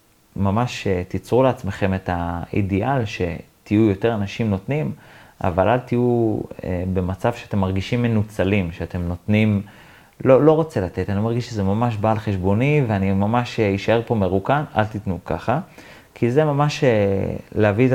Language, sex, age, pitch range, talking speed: Hebrew, male, 30-49, 95-120 Hz, 135 wpm